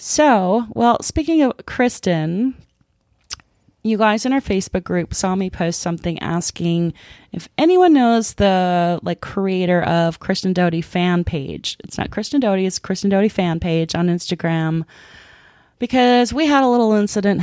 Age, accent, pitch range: 30-49, American, 170-215 Hz